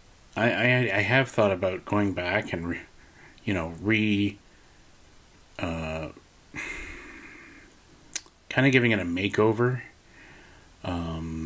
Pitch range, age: 90-115 Hz, 30-49